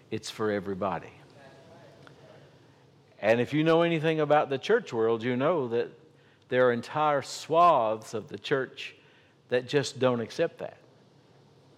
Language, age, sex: English, 60-79, male